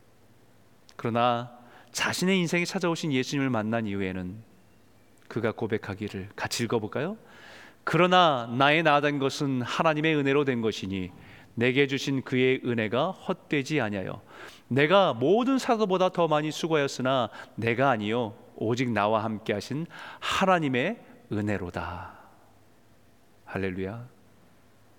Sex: male